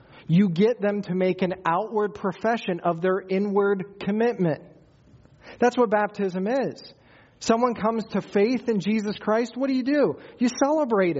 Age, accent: 40-59, American